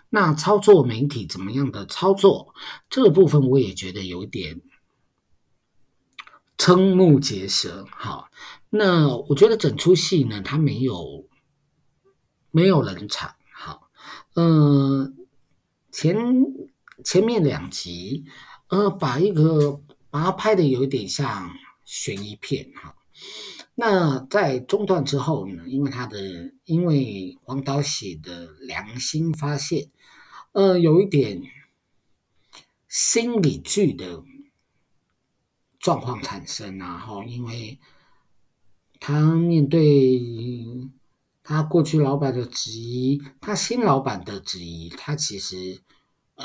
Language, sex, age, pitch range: Chinese, male, 50-69, 115-170 Hz